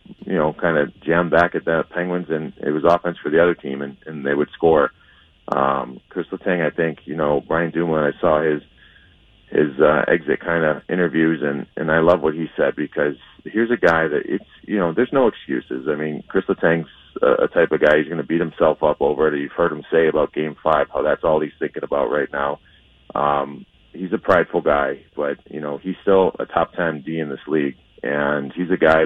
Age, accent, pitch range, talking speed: 30-49, American, 75-90 Hz, 225 wpm